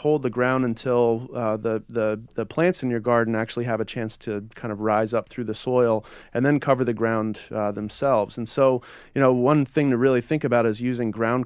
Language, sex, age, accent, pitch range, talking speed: English, male, 30-49, American, 110-130 Hz, 230 wpm